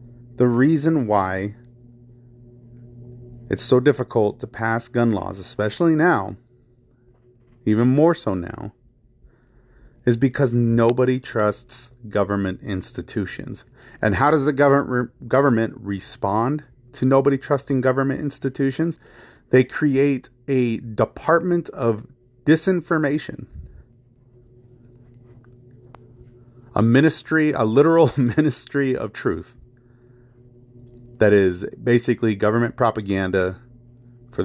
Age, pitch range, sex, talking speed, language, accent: 30-49, 110-125 Hz, male, 90 wpm, English, American